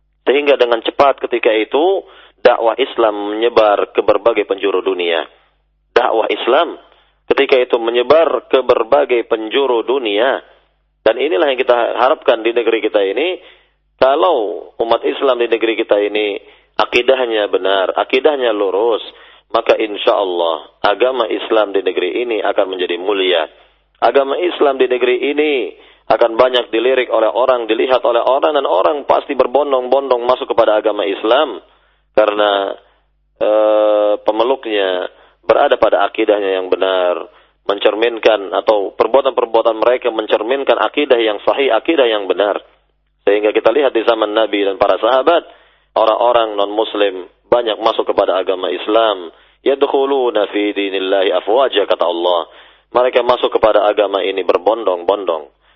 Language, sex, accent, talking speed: Indonesian, male, native, 130 wpm